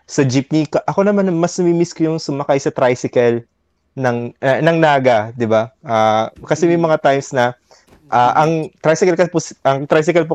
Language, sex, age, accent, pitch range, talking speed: Filipino, male, 20-39, native, 120-160 Hz, 170 wpm